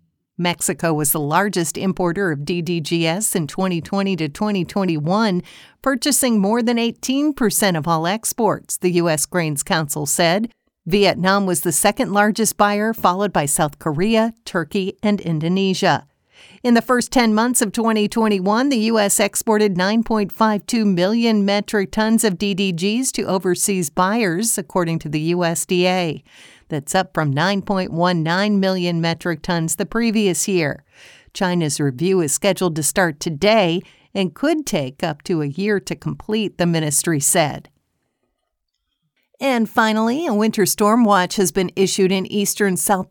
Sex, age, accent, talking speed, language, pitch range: female, 50-69, American, 135 wpm, English, 170-210 Hz